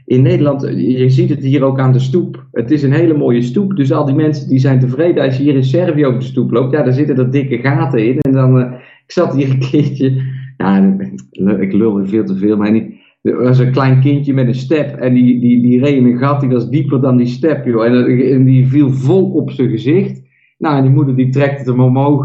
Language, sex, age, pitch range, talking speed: Dutch, male, 50-69, 120-140 Hz, 260 wpm